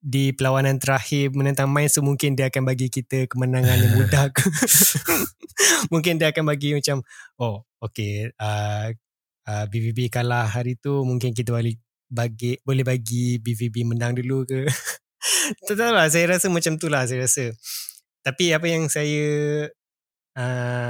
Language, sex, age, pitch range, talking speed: Malay, male, 20-39, 125-150 Hz, 145 wpm